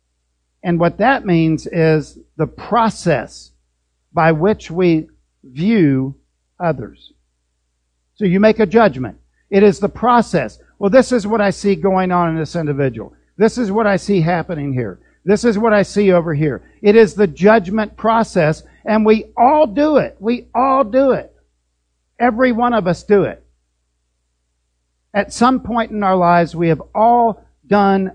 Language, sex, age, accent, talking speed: English, male, 50-69, American, 160 wpm